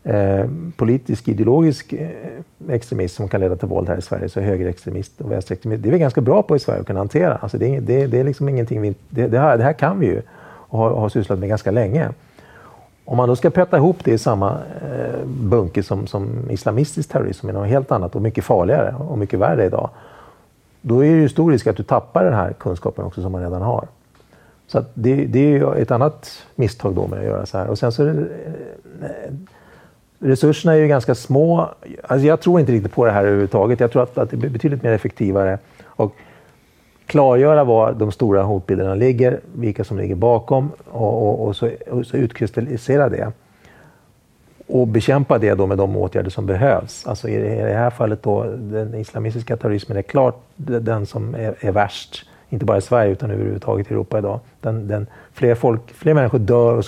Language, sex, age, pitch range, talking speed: Swedish, male, 50-69, 105-135 Hz, 195 wpm